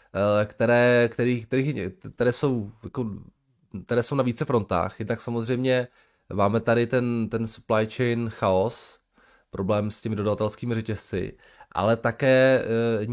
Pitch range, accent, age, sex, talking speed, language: 105-125 Hz, native, 20-39, male, 130 wpm, Czech